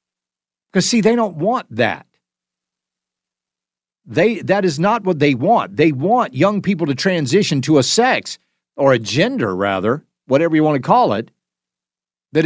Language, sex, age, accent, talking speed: English, male, 50-69, American, 160 wpm